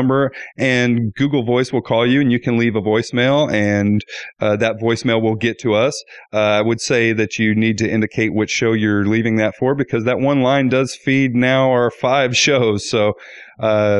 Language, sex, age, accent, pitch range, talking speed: English, male, 30-49, American, 110-135 Hz, 200 wpm